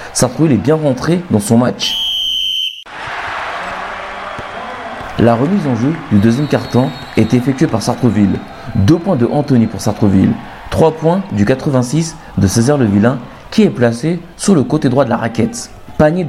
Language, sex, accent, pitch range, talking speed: French, male, French, 115-145 Hz, 160 wpm